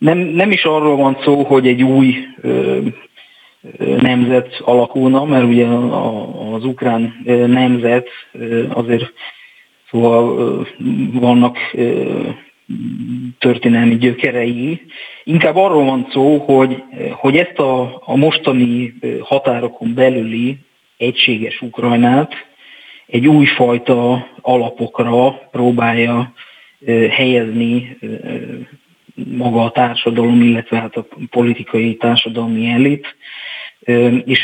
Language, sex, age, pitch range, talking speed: Hungarian, male, 40-59, 115-130 Hz, 105 wpm